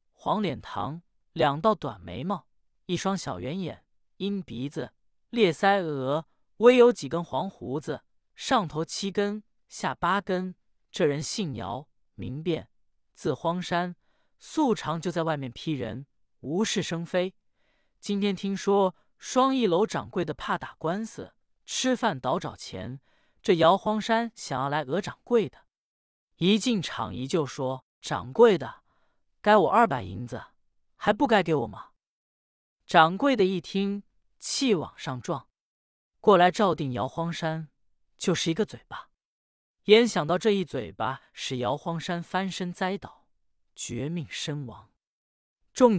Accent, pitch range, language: native, 135-200 Hz, Chinese